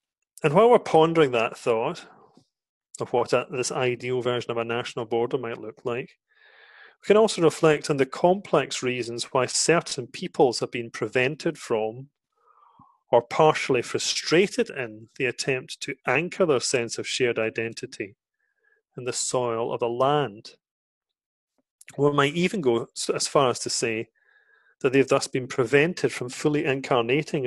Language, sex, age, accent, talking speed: English, male, 30-49, British, 155 wpm